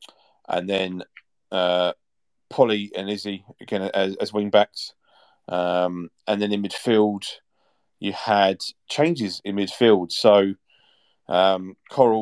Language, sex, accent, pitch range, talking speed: English, male, British, 95-110 Hz, 120 wpm